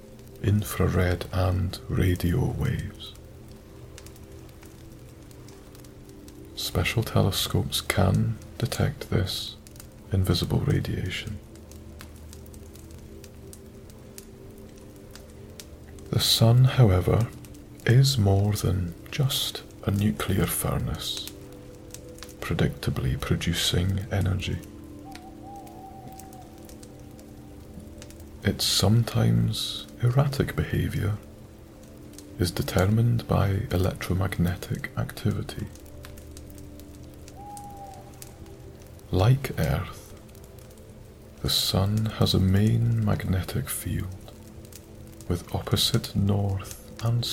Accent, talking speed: British, 60 wpm